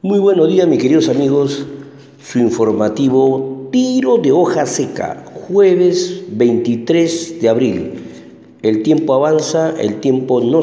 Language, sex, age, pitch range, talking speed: Spanish, male, 50-69, 115-160 Hz, 125 wpm